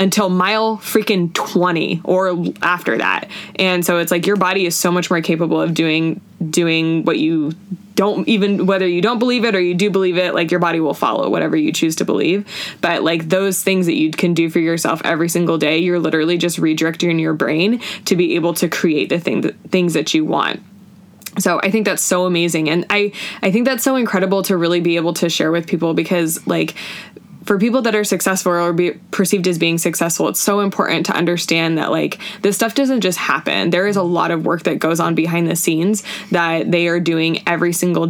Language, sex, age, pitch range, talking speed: English, female, 20-39, 165-195 Hz, 220 wpm